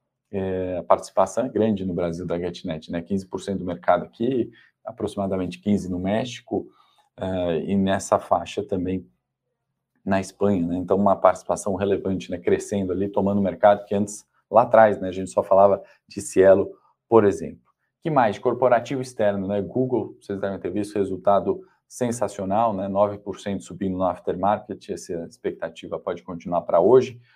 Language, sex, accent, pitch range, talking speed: Portuguese, male, Brazilian, 95-110 Hz, 160 wpm